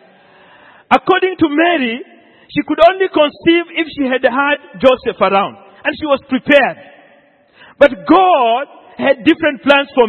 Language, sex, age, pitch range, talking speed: English, male, 40-59, 250-315 Hz, 135 wpm